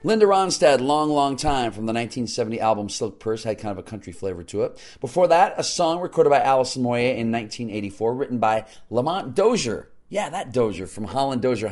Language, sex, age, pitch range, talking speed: English, male, 40-59, 100-125 Hz, 200 wpm